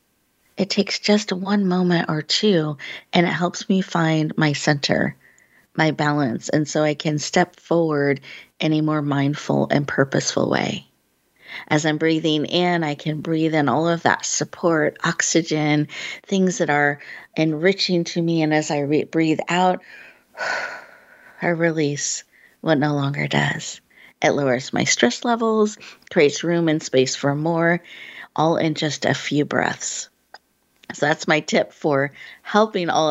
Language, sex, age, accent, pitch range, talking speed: English, female, 40-59, American, 145-180 Hz, 150 wpm